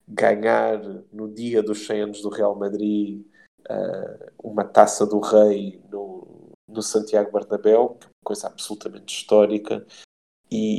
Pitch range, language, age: 105-120 Hz, Portuguese, 20-39